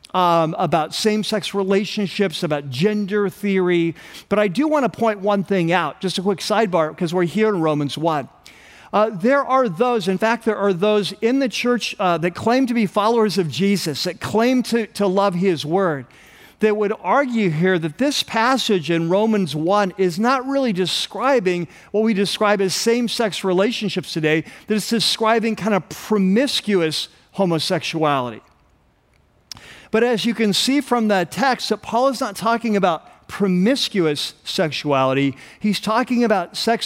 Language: English